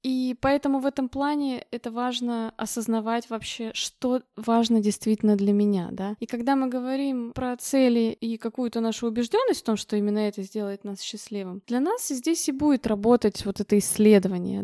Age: 20-39